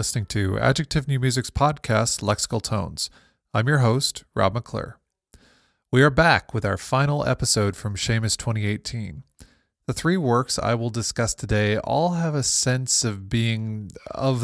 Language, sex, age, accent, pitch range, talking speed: English, male, 20-39, American, 105-125 Hz, 155 wpm